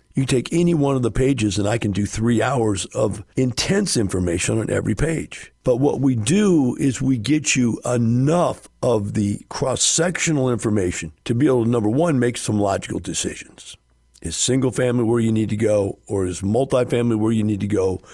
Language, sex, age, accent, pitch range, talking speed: English, male, 50-69, American, 105-135 Hz, 190 wpm